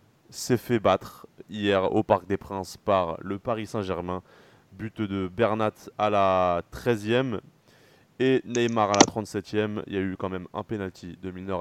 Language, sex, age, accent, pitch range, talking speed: French, male, 20-39, French, 95-125 Hz, 170 wpm